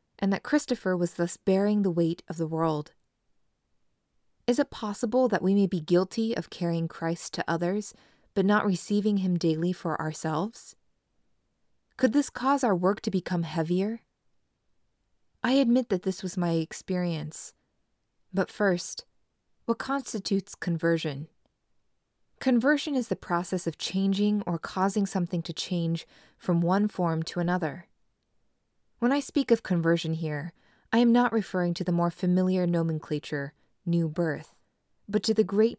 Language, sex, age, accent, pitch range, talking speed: English, female, 20-39, American, 165-205 Hz, 150 wpm